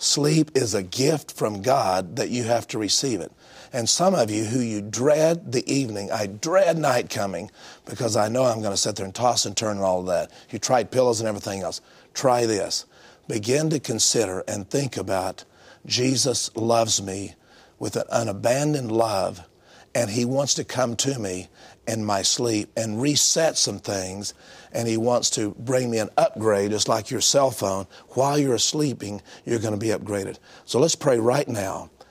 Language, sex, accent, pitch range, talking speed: English, male, American, 110-140 Hz, 190 wpm